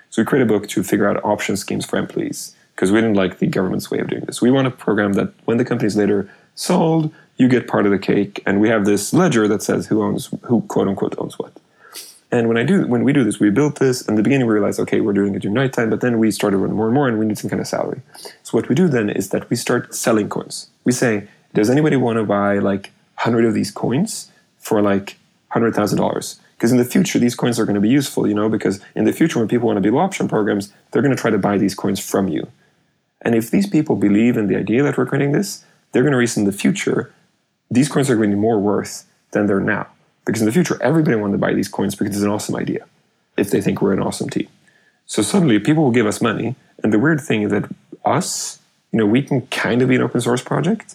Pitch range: 105-130 Hz